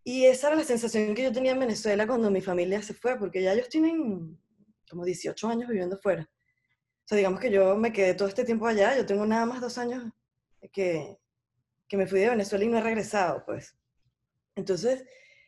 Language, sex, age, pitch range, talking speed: English, female, 20-39, 185-235 Hz, 205 wpm